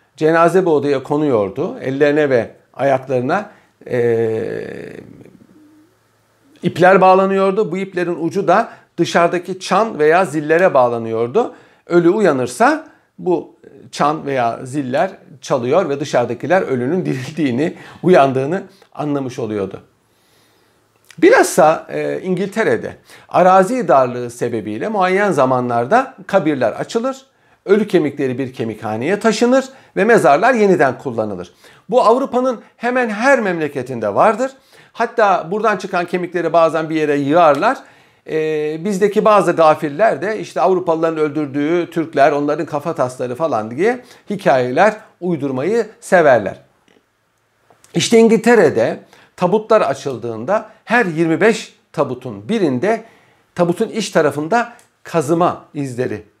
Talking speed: 100 wpm